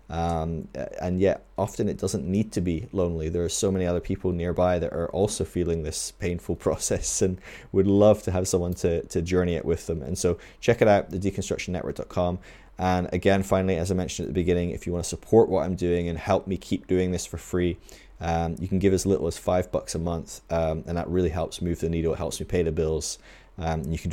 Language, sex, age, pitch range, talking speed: English, male, 20-39, 80-95 Hz, 240 wpm